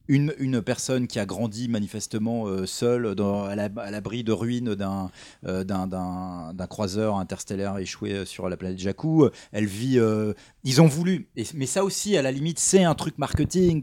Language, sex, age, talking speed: French, male, 30-49, 195 wpm